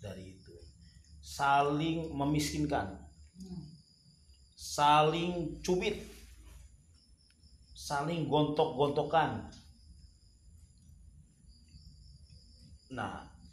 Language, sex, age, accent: Indonesian, male, 40-59, native